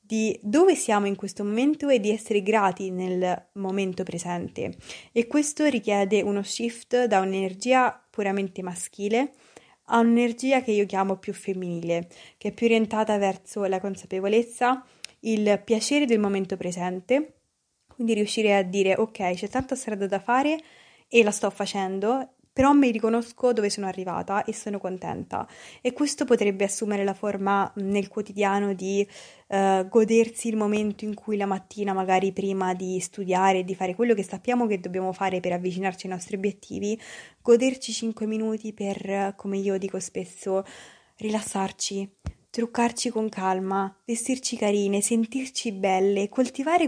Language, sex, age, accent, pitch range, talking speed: Italian, female, 20-39, native, 195-230 Hz, 145 wpm